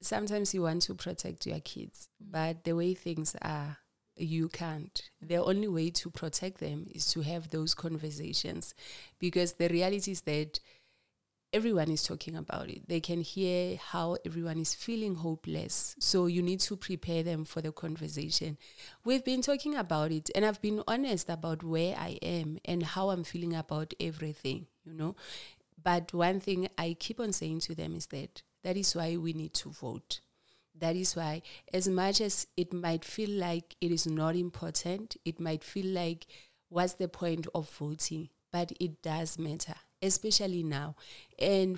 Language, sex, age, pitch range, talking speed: English, female, 30-49, 160-190 Hz, 175 wpm